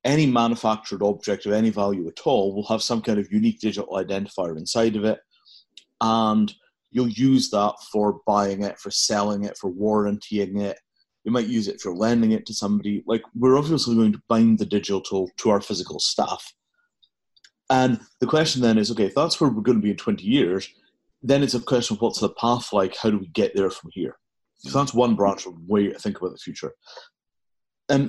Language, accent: English, British